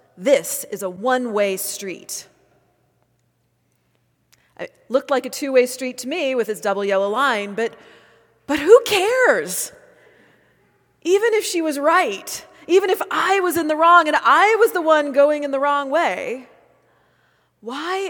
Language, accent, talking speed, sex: English, American, 150 wpm, female